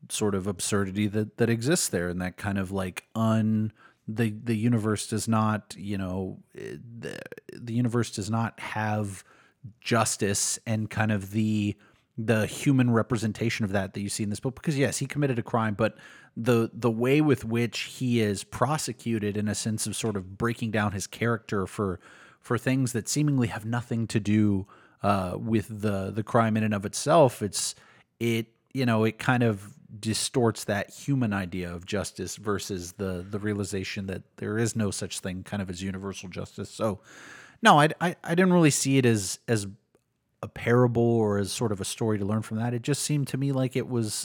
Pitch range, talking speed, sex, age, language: 105-120 Hz, 195 wpm, male, 30-49, English